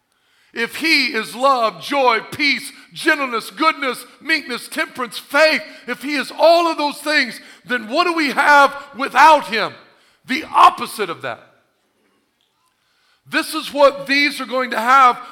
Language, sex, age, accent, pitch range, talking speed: English, male, 50-69, American, 200-300 Hz, 145 wpm